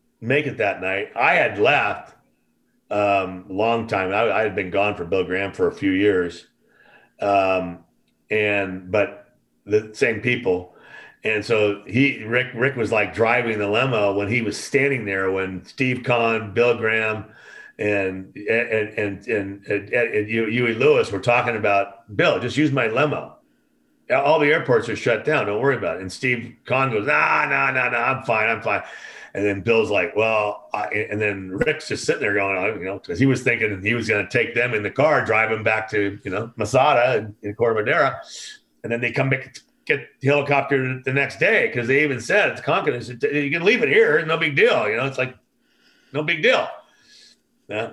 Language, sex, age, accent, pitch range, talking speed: English, male, 40-59, American, 100-125 Hz, 205 wpm